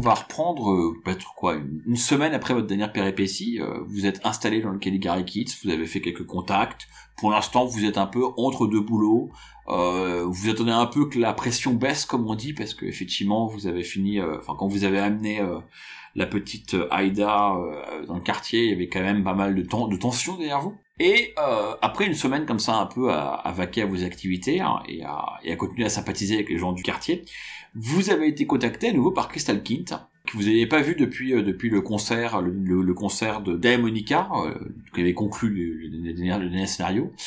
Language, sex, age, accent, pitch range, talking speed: French, male, 30-49, French, 95-120 Hz, 215 wpm